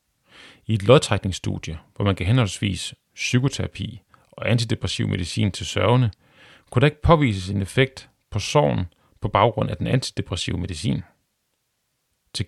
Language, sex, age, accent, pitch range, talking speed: Danish, male, 40-59, native, 95-130 Hz, 135 wpm